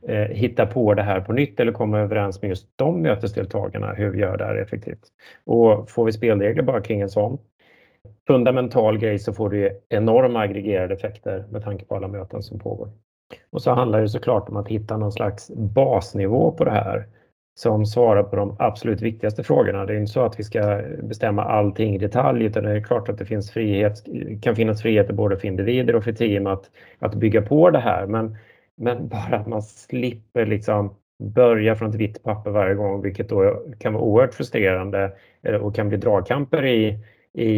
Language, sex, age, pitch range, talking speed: Swedish, male, 30-49, 100-115 Hz, 195 wpm